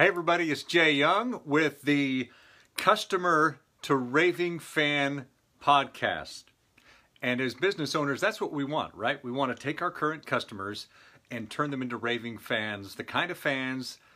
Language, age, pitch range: English, 40-59, 120-150 Hz